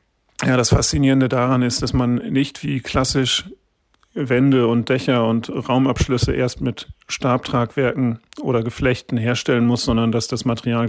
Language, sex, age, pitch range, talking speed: German, male, 40-59, 115-130 Hz, 145 wpm